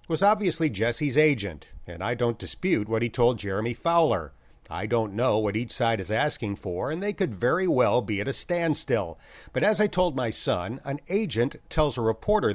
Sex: male